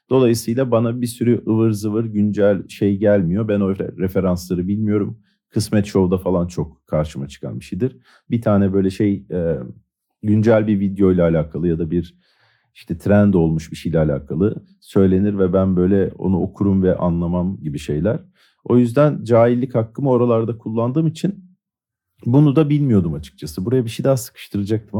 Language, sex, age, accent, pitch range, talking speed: Turkish, male, 50-69, native, 85-110 Hz, 160 wpm